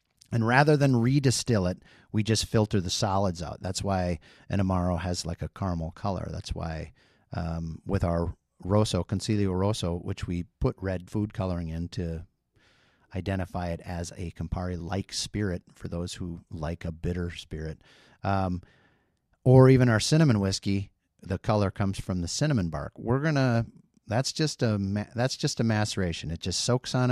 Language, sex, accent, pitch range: English, male, American, 85-110 Hz